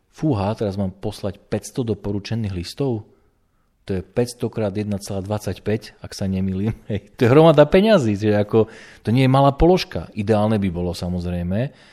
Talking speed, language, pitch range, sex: 150 wpm, Slovak, 90-115 Hz, male